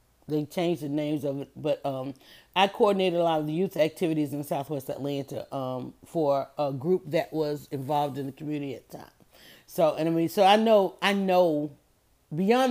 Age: 40-59